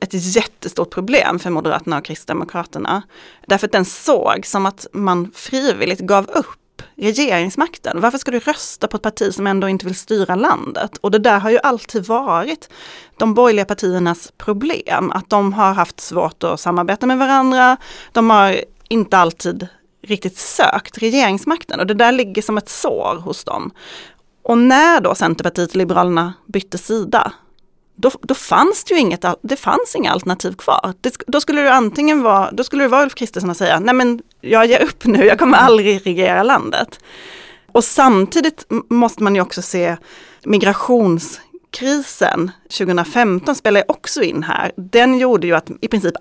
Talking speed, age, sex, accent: 160 wpm, 30-49, female, native